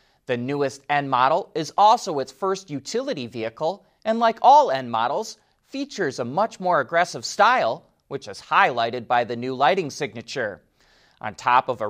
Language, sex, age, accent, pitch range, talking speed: English, male, 30-49, American, 130-205 Hz, 155 wpm